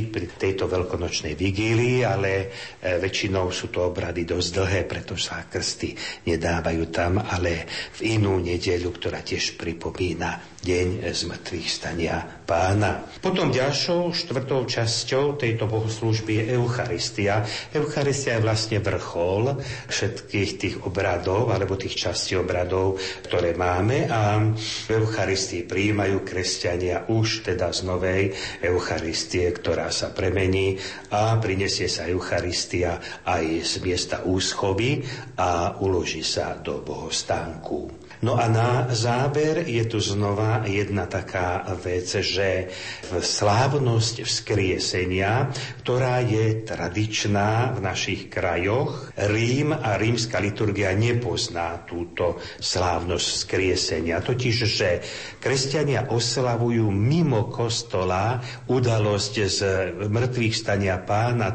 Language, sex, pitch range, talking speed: Slovak, male, 95-120 Hz, 110 wpm